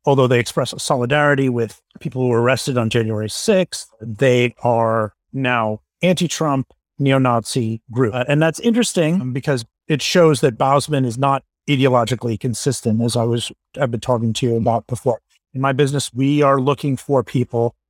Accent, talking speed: American, 170 wpm